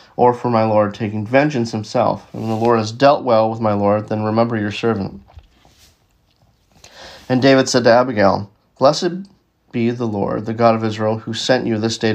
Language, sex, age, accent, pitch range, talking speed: English, male, 40-59, American, 110-130 Hz, 195 wpm